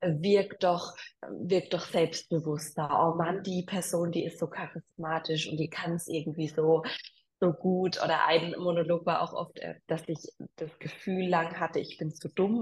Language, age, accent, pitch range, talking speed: German, 20-39, German, 170-205 Hz, 175 wpm